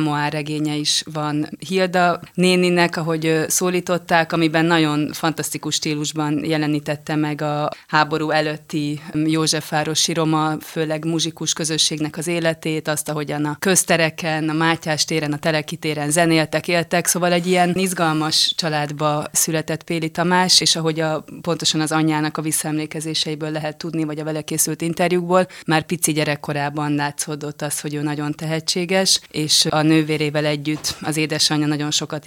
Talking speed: 140 wpm